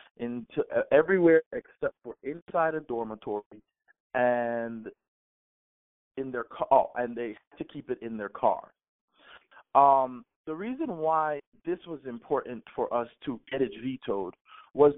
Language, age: English, 40-59